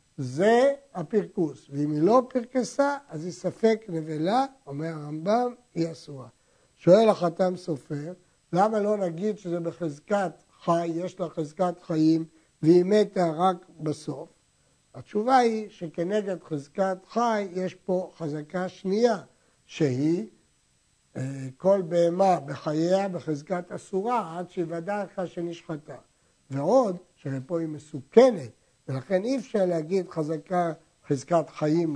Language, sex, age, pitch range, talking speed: Hebrew, male, 60-79, 165-210 Hz, 115 wpm